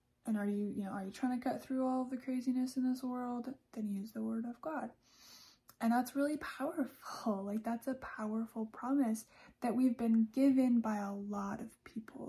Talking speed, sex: 200 wpm, female